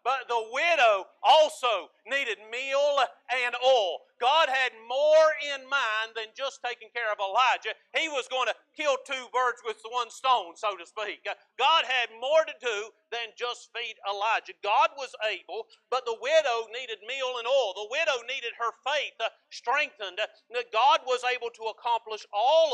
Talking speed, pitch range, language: 165 wpm, 205-265 Hz, English